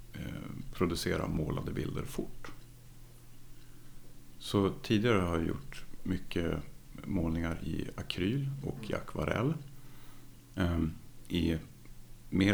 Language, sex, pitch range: Swedish, male, 85-110 Hz